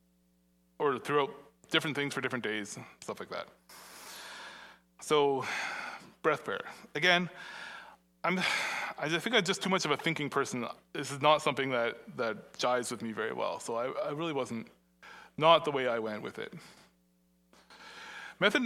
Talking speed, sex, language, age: 160 wpm, male, English, 30-49